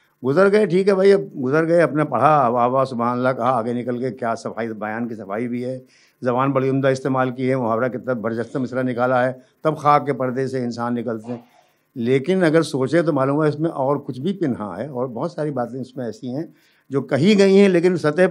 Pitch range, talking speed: 125-165 Hz, 230 wpm